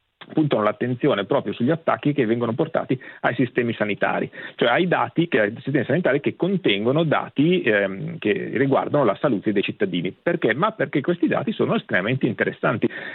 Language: Italian